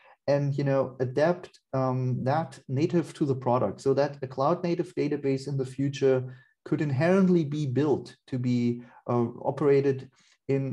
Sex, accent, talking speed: male, German, 155 wpm